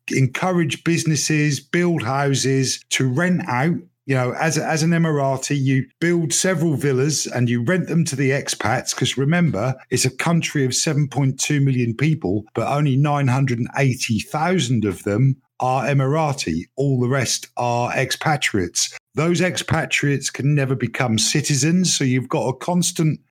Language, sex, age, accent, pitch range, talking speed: English, male, 50-69, British, 125-155 Hz, 145 wpm